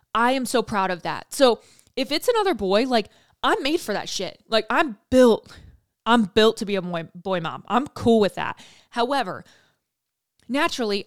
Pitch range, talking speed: 195-255 Hz, 185 wpm